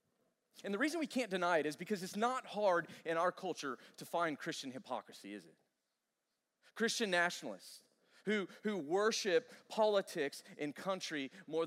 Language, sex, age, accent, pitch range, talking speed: English, male, 30-49, American, 130-200 Hz, 155 wpm